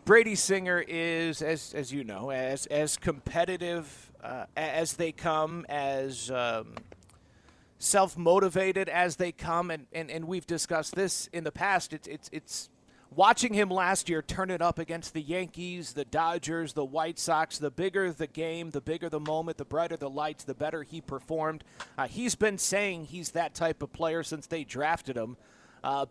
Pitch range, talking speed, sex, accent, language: 150-185 Hz, 175 wpm, male, American, English